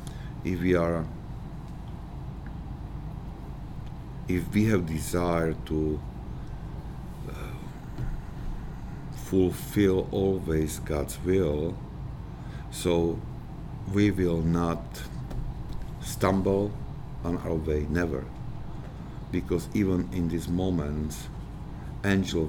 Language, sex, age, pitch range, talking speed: English, male, 60-79, 80-105 Hz, 75 wpm